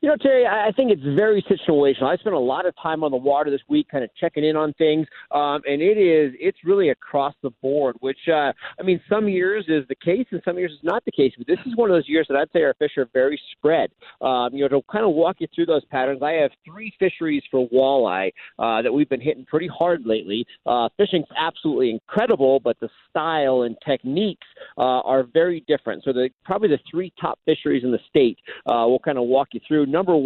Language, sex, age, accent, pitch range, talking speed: English, male, 40-59, American, 130-175 Hz, 240 wpm